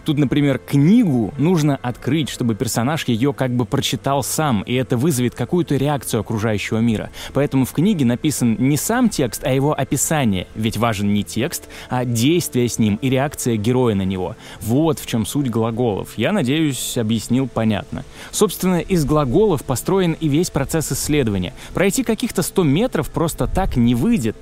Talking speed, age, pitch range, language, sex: 165 wpm, 20-39, 120-155 Hz, Russian, male